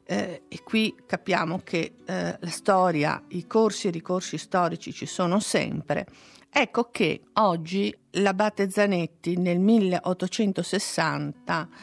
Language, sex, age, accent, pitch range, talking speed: Italian, female, 50-69, native, 170-215 Hz, 120 wpm